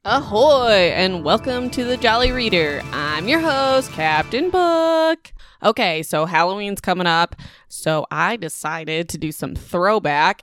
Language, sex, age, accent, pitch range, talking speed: English, female, 20-39, American, 165-230 Hz, 140 wpm